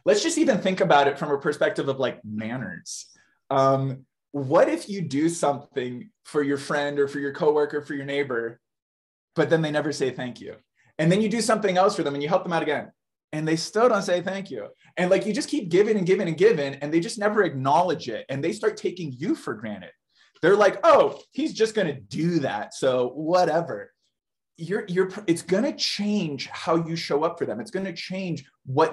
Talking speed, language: 220 wpm, English